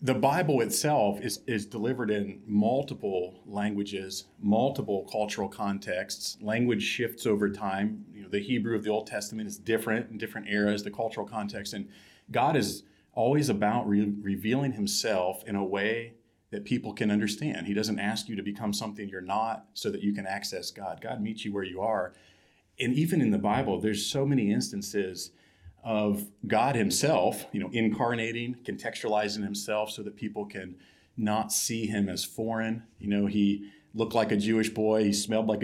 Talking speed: 175 wpm